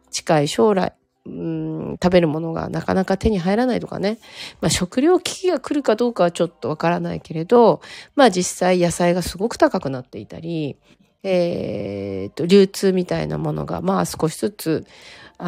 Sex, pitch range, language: female, 160-210 Hz, Japanese